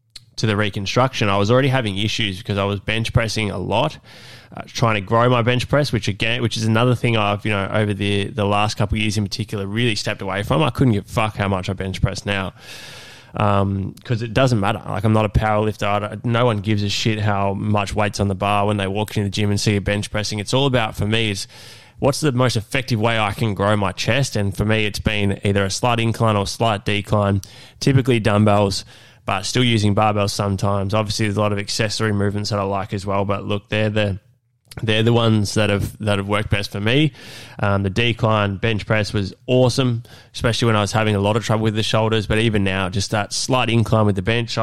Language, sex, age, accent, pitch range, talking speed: English, male, 20-39, Australian, 100-115 Hz, 240 wpm